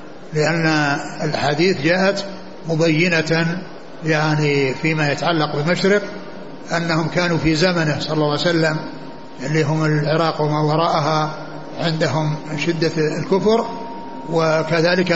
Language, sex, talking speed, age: Arabic, male, 100 wpm, 60-79